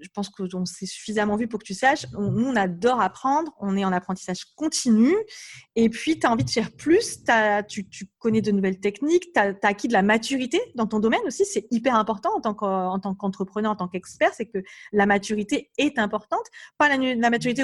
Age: 30-49